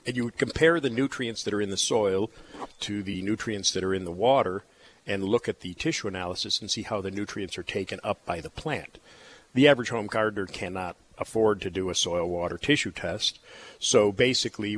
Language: English